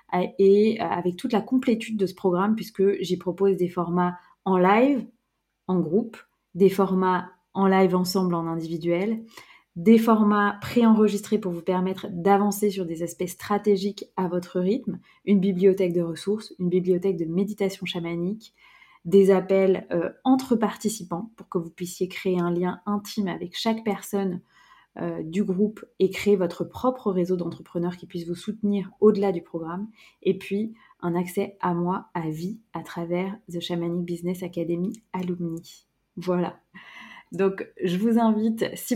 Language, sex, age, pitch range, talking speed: French, female, 20-39, 180-215 Hz, 155 wpm